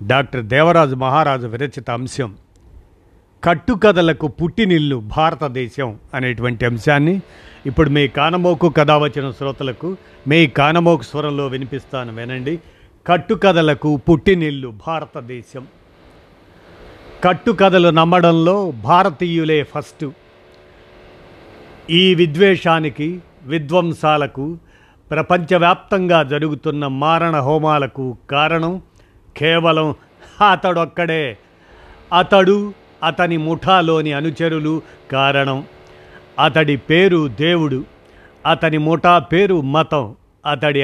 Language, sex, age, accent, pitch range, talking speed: Telugu, male, 50-69, native, 130-165 Hz, 75 wpm